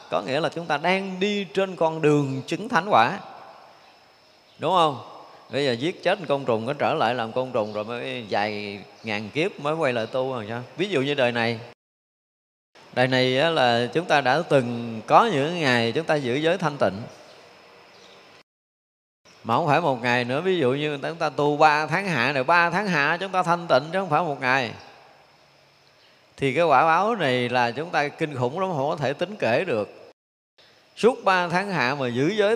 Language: Vietnamese